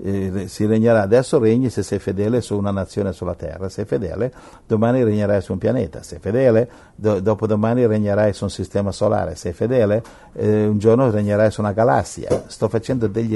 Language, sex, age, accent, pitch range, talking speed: Italian, male, 60-79, native, 95-115 Hz, 195 wpm